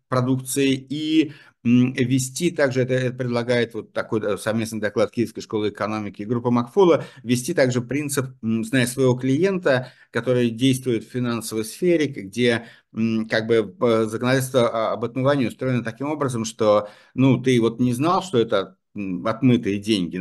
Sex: male